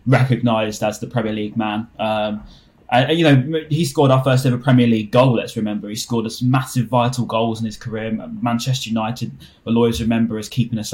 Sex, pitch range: male, 115-130 Hz